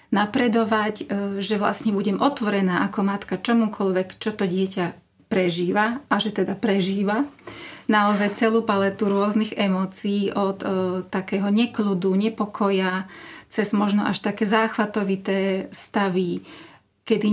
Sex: female